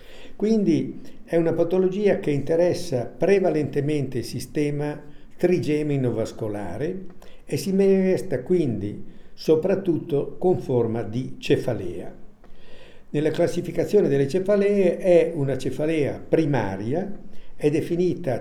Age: 60-79